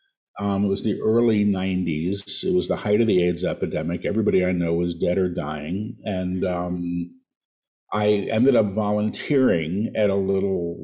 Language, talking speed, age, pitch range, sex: English, 165 wpm, 50-69, 90-120 Hz, male